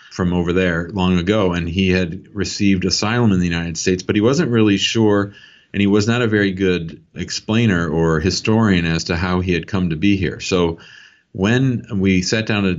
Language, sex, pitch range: English, male, 90-110 Hz